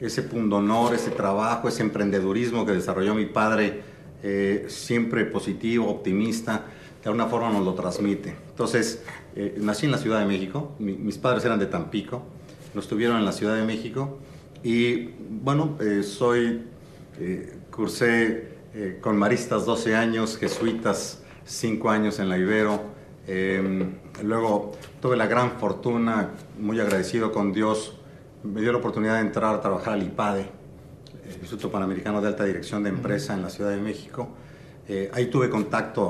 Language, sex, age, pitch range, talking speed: English, male, 40-59, 100-115 Hz, 160 wpm